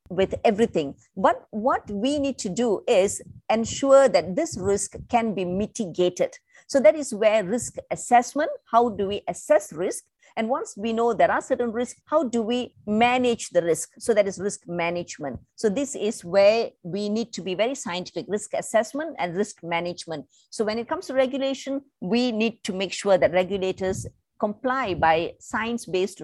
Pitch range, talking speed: 190-265 Hz, 175 wpm